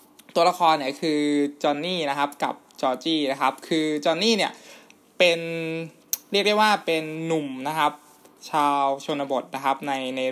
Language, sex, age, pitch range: Thai, male, 20-39, 135-180 Hz